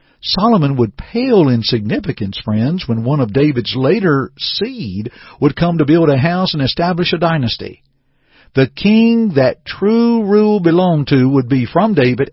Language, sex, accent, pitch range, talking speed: English, male, American, 125-170 Hz, 160 wpm